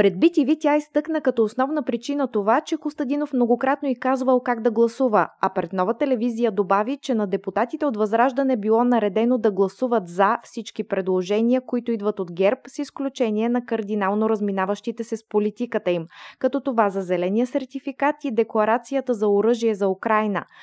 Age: 20-39